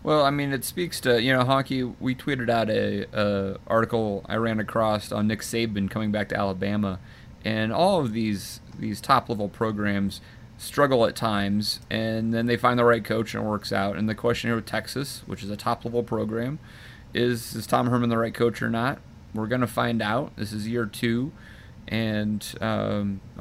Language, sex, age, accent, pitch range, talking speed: English, male, 30-49, American, 105-120 Hz, 200 wpm